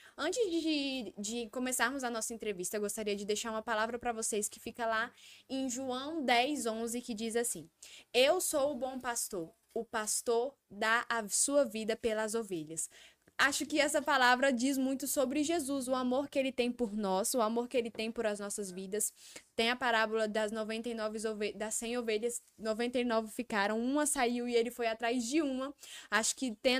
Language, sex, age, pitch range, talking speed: Portuguese, female, 10-29, 220-270 Hz, 190 wpm